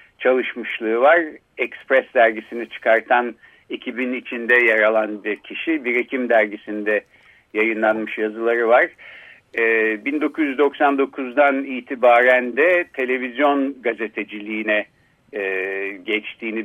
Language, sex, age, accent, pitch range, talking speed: Turkish, male, 60-79, native, 110-140 Hz, 85 wpm